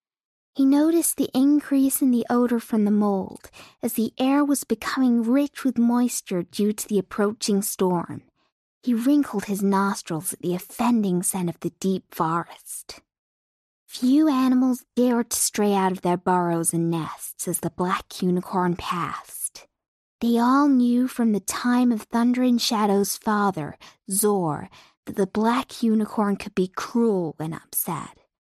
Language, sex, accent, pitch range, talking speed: English, female, American, 190-245 Hz, 150 wpm